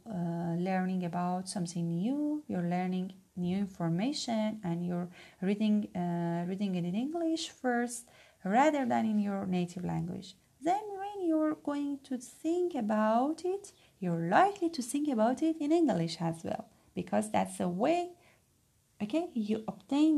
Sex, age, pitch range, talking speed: female, 30-49, 180-270 Hz, 140 wpm